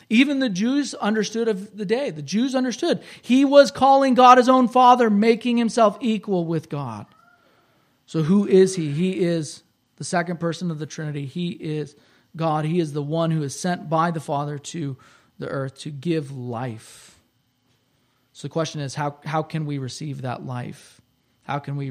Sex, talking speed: male, 185 wpm